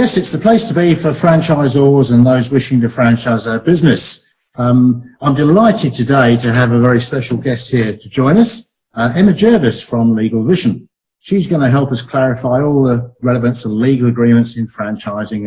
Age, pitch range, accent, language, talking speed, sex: 50-69, 115-145 Hz, British, English, 190 wpm, male